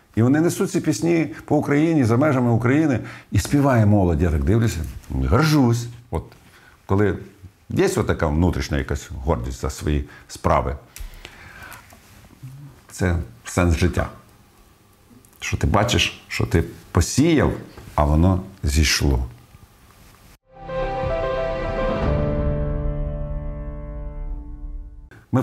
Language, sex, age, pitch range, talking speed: Russian, male, 50-69, 80-120 Hz, 95 wpm